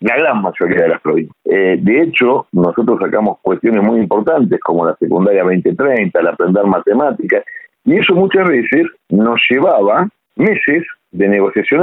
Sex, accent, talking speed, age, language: male, Argentinian, 150 wpm, 50-69, Spanish